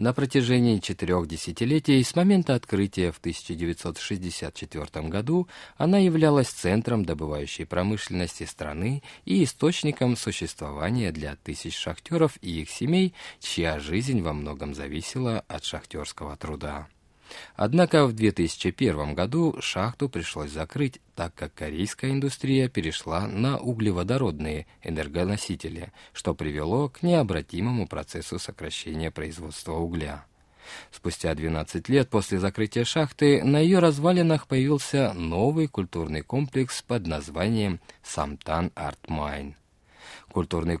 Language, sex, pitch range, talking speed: Russian, male, 80-135 Hz, 110 wpm